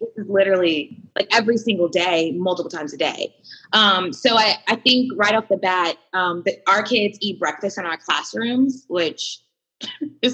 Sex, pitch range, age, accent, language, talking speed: female, 170-210 Hz, 20-39, American, English, 180 wpm